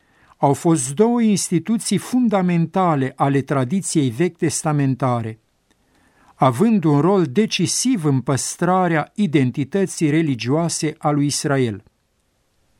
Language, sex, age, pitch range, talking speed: Romanian, male, 50-69, 145-185 Hz, 95 wpm